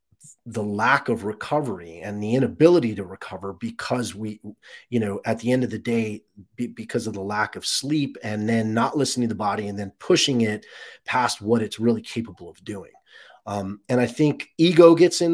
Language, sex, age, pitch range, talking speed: English, male, 30-49, 110-145 Hz, 195 wpm